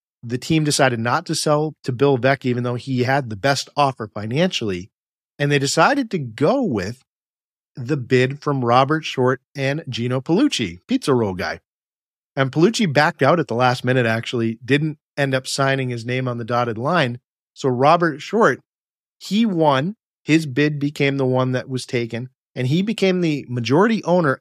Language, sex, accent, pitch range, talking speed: English, male, American, 125-155 Hz, 175 wpm